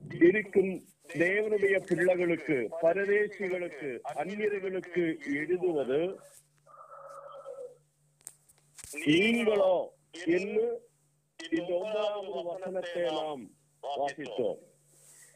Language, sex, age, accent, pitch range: Tamil, male, 50-69, native, 160-215 Hz